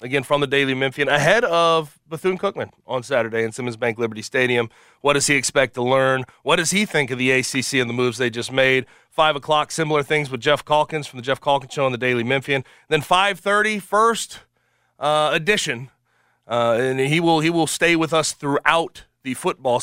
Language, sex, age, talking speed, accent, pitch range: English, male, 30-49, 205 wpm, American, 120-155 Hz